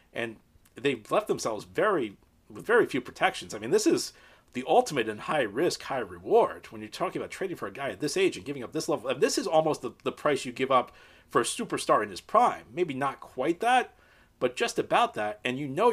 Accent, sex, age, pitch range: American, male, 40-59, 110-160 Hz